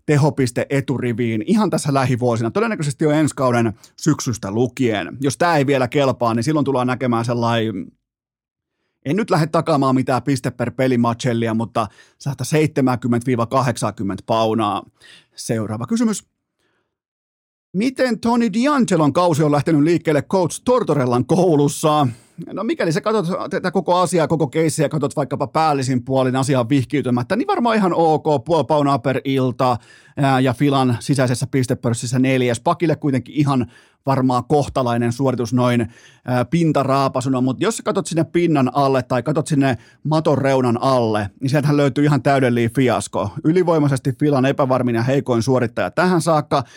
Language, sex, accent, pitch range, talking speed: Finnish, male, native, 125-155 Hz, 135 wpm